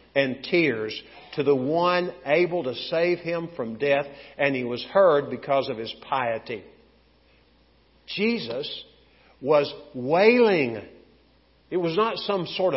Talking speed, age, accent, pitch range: 125 wpm, 50-69, American, 130-180 Hz